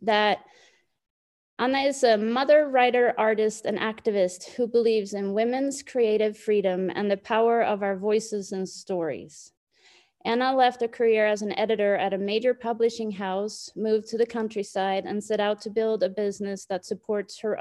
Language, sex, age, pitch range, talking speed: English, female, 30-49, 205-235 Hz, 165 wpm